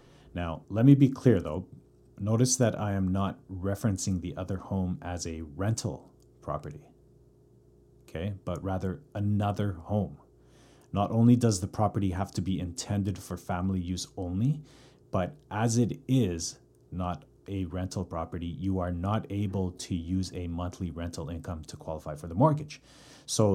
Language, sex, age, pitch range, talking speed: English, male, 30-49, 90-110 Hz, 155 wpm